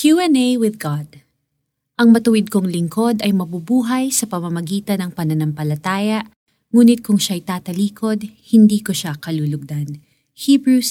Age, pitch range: 20-39, 155-220 Hz